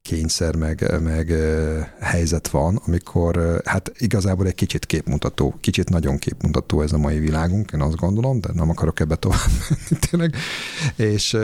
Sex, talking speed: male, 165 wpm